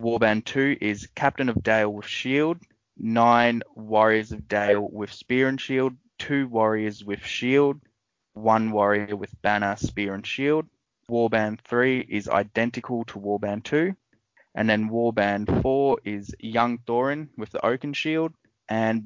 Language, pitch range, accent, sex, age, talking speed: English, 100-120 Hz, Australian, male, 20-39, 145 wpm